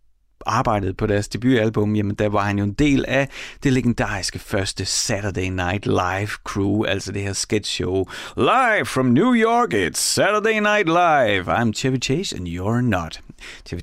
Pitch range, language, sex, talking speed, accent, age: 100-145 Hz, Danish, male, 170 wpm, native, 30-49